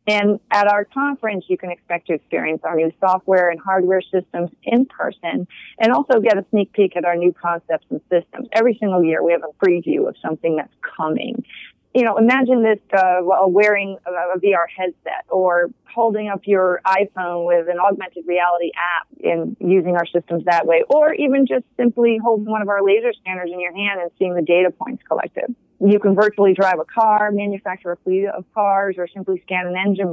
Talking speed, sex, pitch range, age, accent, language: 200 wpm, female, 180-215 Hz, 30-49, American, English